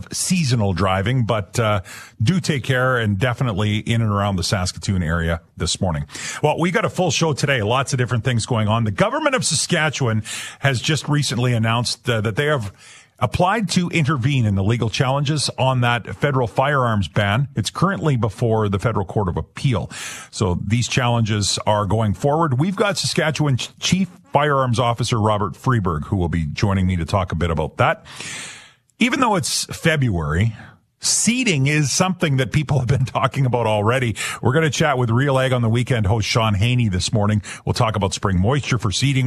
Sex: male